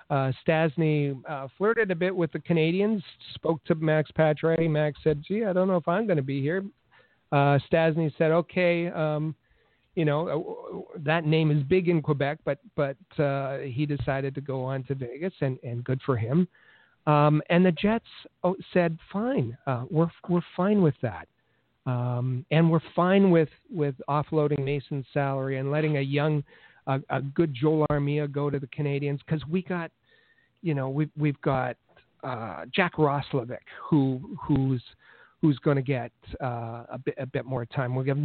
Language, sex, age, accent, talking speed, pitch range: English, male, 50-69, American, 180 wpm, 135-170 Hz